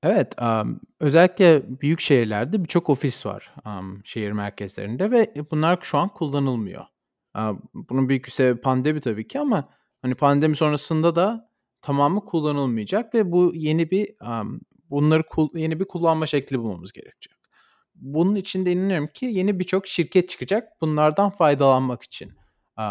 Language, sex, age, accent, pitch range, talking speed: Turkish, male, 40-59, native, 125-175 Hz, 145 wpm